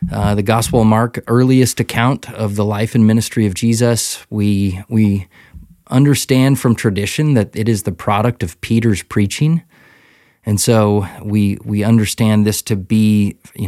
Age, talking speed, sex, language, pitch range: 20-39, 160 wpm, male, English, 100-115 Hz